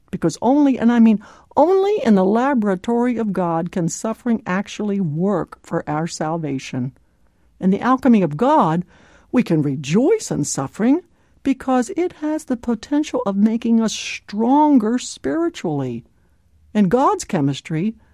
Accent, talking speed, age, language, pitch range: American, 135 wpm, 60-79, English, 165-255 Hz